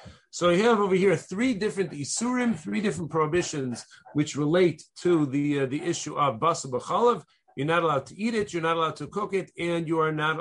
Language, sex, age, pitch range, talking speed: English, male, 40-59, 140-170 Hz, 215 wpm